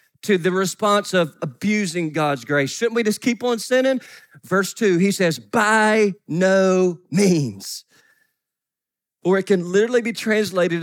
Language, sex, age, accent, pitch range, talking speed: English, male, 40-59, American, 185-255 Hz, 145 wpm